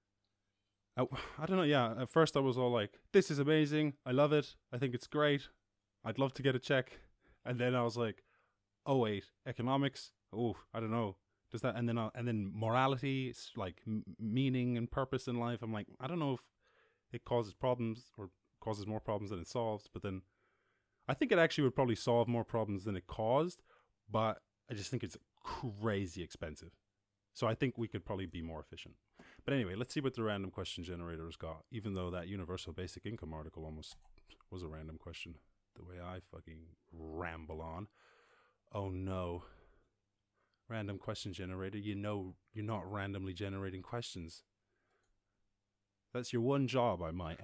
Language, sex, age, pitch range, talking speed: English, male, 20-39, 95-120 Hz, 185 wpm